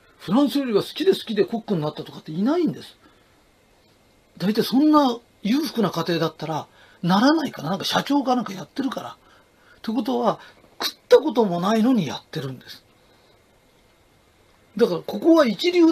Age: 40-59